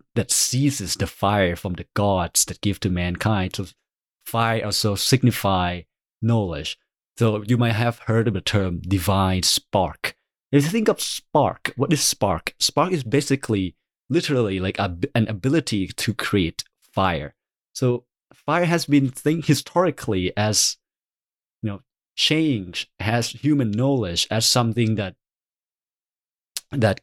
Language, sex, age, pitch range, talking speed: English, male, 30-49, 100-130 Hz, 140 wpm